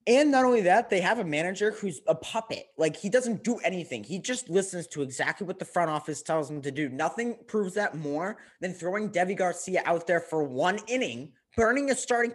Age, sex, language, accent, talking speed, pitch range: 20-39, male, English, American, 220 wpm, 150-210 Hz